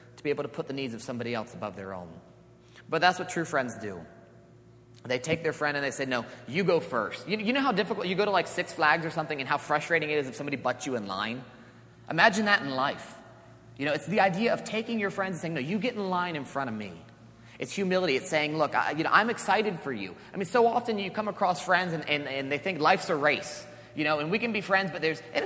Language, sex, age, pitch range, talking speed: English, male, 30-49, 125-195 Hz, 275 wpm